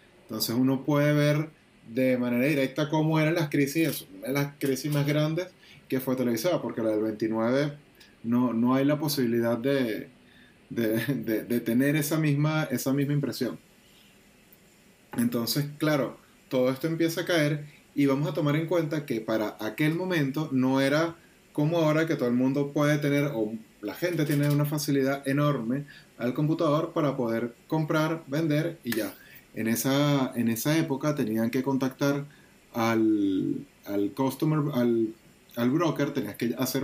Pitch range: 125-150 Hz